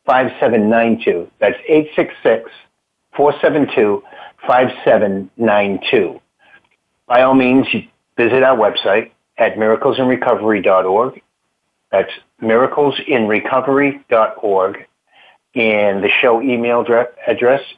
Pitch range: 105-130 Hz